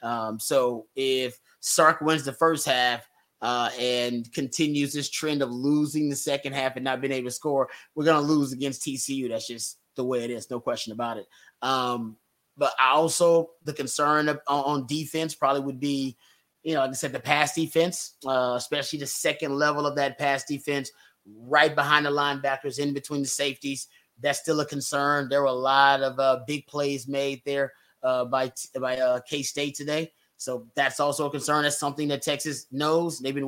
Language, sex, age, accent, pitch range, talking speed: English, male, 30-49, American, 135-155 Hz, 195 wpm